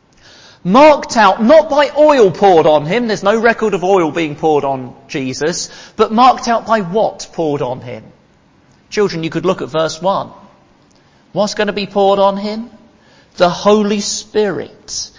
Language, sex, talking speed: English, male, 165 wpm